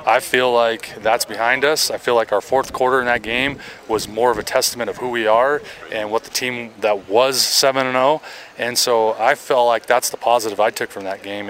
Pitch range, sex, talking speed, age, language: 110-135 Hz, male, 230 wpm, 20-39, English